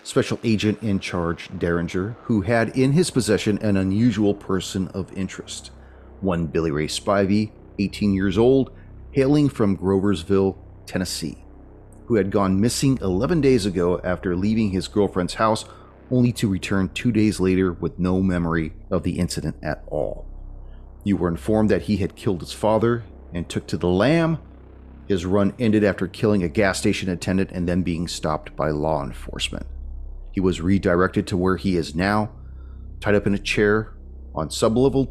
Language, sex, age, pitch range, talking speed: English, male, 40-59, 85-105 Hz, 165 wpm